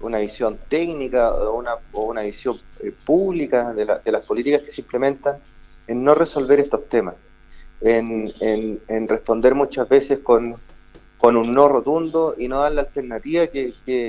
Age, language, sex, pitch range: 30-49, Spanish, male, 120-145 Hz